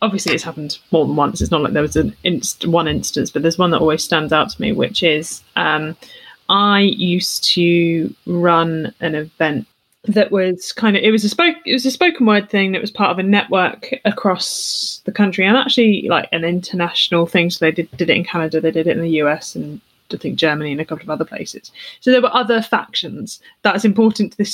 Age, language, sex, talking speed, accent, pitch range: 20-39, English, female, 230 wpm, British, 170-230 Hz